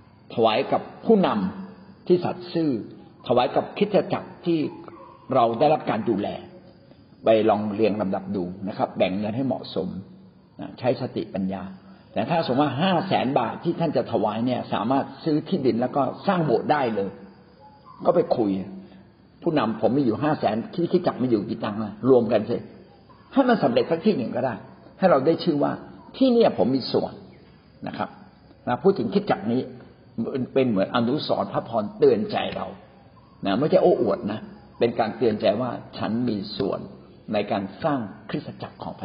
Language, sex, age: Thai, male, 60-79